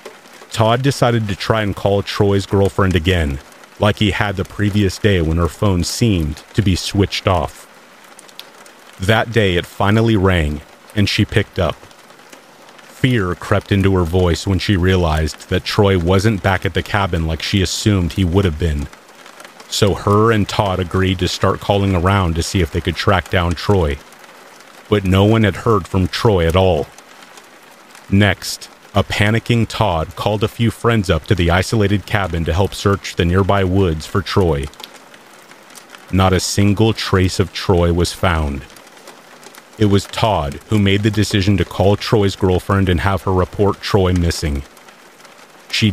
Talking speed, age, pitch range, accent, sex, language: 165 wpm, 40-59, 90-105 Hz, American, male, English